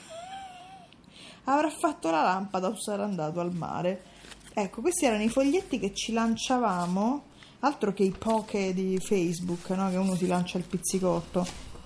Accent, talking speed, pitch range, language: native, 150 wpm, 185-250 Hz, Italian